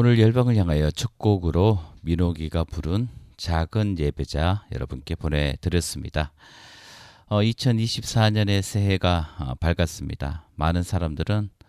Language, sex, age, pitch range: Korean, male, 40-59, 80-100 Hz